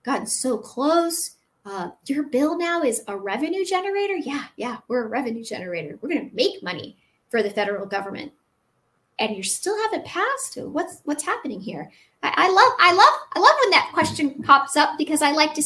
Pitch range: 245-335 Hz